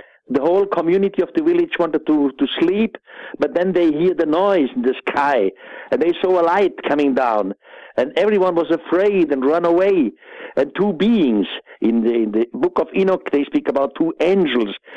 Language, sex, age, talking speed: English, male, 60-79, 190 wpm